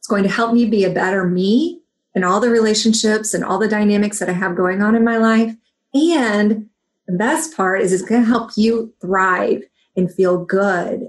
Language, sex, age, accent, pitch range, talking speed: English, female, 30-49, American, 190-235 Hz, 210 wpm